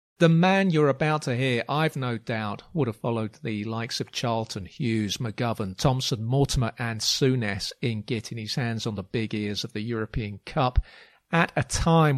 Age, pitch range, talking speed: 40-59, 115-145 Hz, 180 wpm